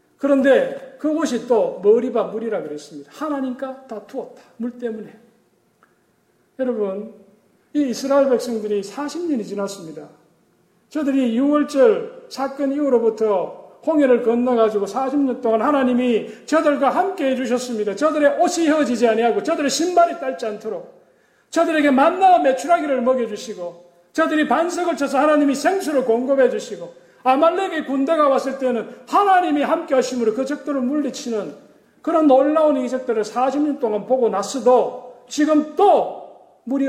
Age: 40-59